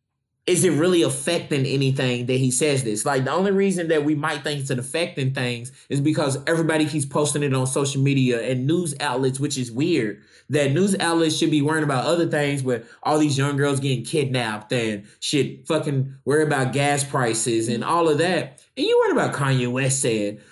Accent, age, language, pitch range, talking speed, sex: American, 20-39, English, 135-195 Hz, 205 wpm, male